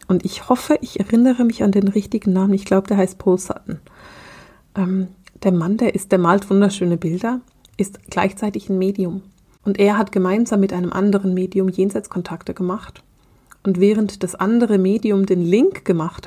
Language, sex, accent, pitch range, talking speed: German, female, German, 180-200 Hz, 170 wpm